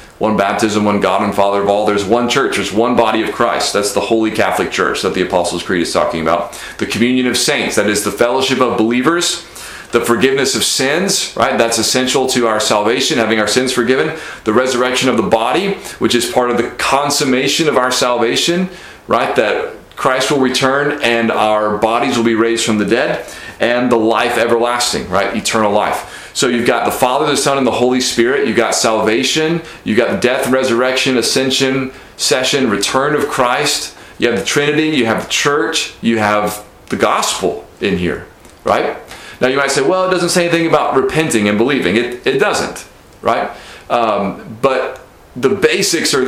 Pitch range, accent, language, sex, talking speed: 110-135 Hz, American, English, male, 190 wpm